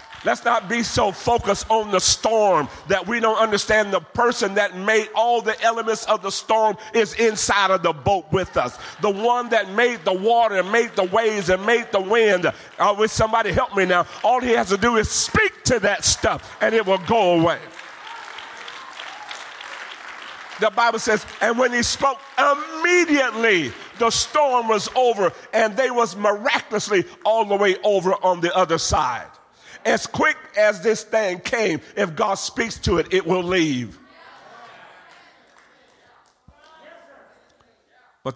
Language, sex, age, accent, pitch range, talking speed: English, male, 50-69, American, 180-235 Hz, 160 wpm